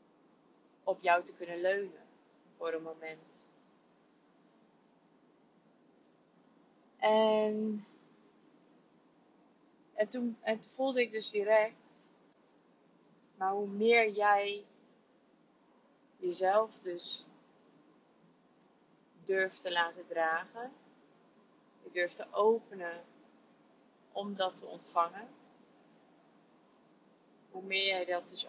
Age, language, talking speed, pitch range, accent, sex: 20-39, Dutch, 85 wpm, 175-220 Hz, Dutch, female